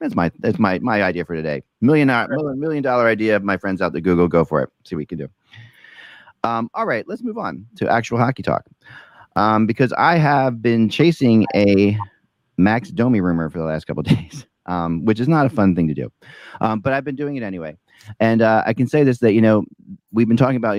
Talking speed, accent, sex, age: 235 wpm, American, male, 40-59